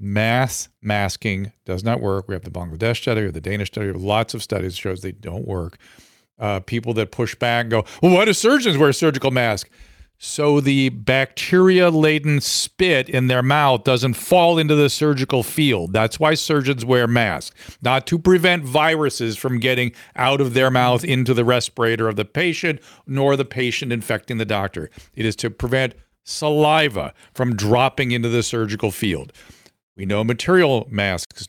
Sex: male